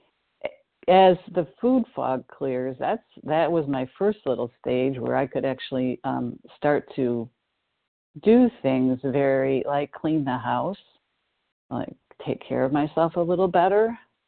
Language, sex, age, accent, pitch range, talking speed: English, female, 50-69, American, 130-175 Hz, 145 wpm